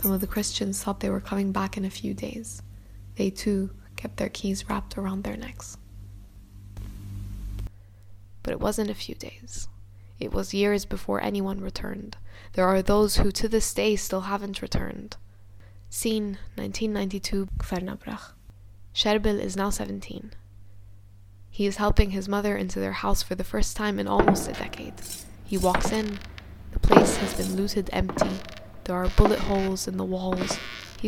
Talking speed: 160 wpm